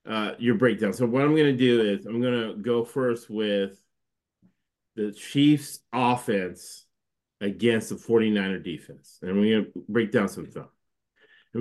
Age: 40-59